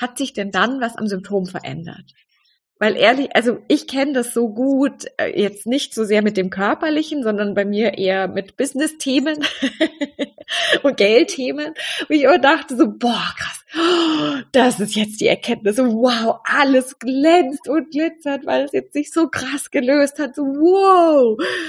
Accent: German